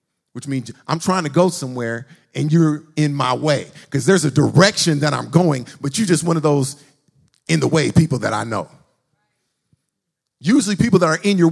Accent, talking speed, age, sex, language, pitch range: American, 200 wpm, 50-69, male, English, 140-200 Hz